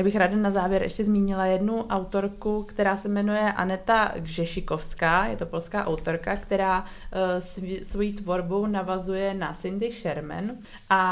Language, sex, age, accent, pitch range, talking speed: Czech, female, 20-39, native, 175-200 Hz, 140 wpm